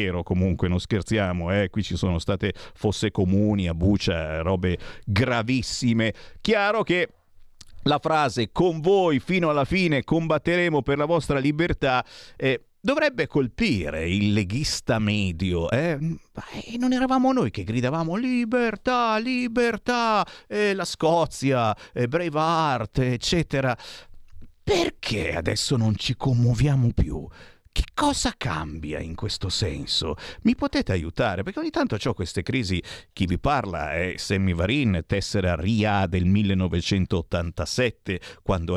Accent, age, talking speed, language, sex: native, 50-69, 125 wpm, Italian, male